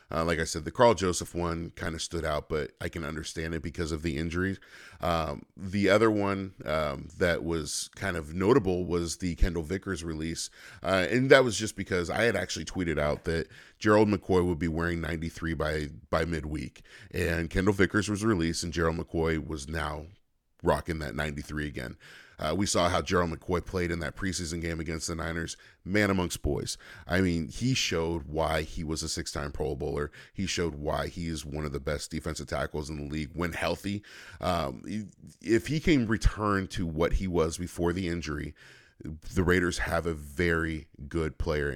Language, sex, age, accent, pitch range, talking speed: English, male, 40-59, American, 80-95 Hz, 195 wpm